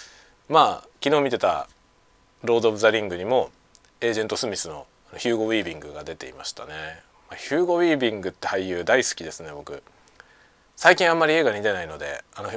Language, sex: Japanese, male